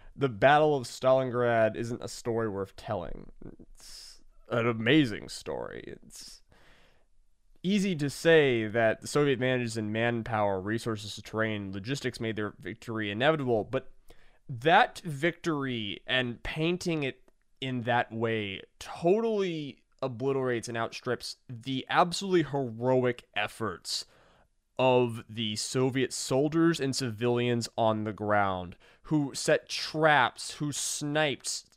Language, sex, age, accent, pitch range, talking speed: English, male, 20-39, American, 115-160 Hz, 115 wpm